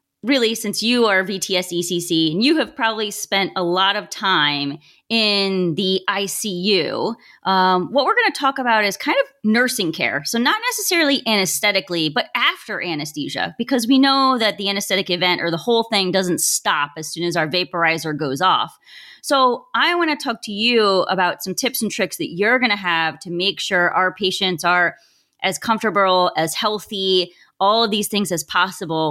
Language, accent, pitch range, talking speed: English, American, 175-230 Hz, 185 wpm